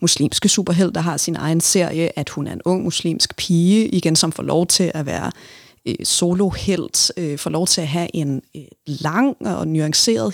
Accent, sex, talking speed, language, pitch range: native, female, 195 wpm, Danish, 160-190 Hz